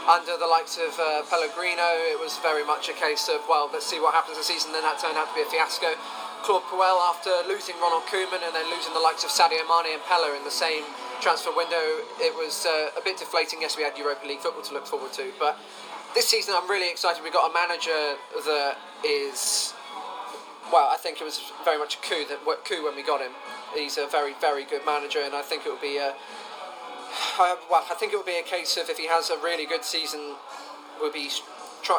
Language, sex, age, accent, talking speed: English, male, 20-39, British, 235 wpm